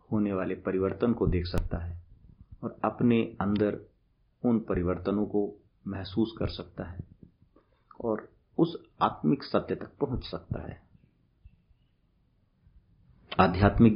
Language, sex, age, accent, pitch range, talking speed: Hindi, male, 50-69, native, 95-110 Hz, 110 wpm